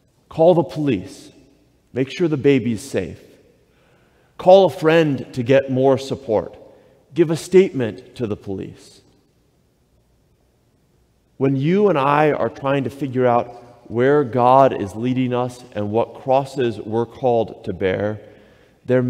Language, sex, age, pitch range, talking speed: English, male, 40-59, 120-160 Hz, 135 wpm